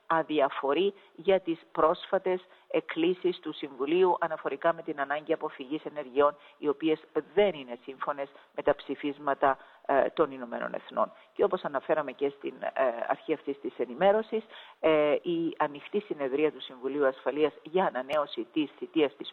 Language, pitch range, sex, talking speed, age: Greek, 145-205 Hz, female, 135 wpm, 50-69